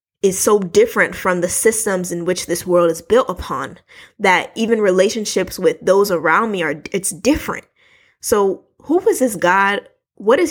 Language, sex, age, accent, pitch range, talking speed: English, female, 20-39, American, 180-250 Hz, 170 wpm